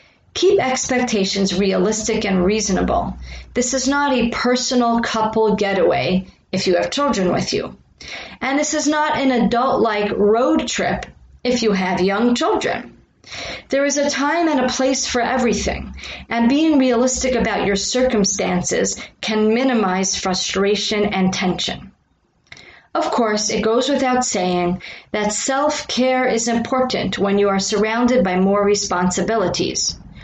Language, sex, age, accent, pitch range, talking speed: English, female, 40-59, American, 195-255 Hz, 135 wpm